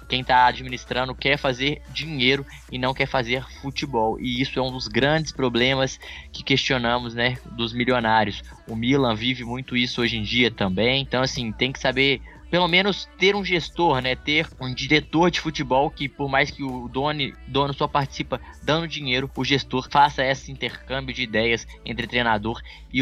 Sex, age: male, 20-39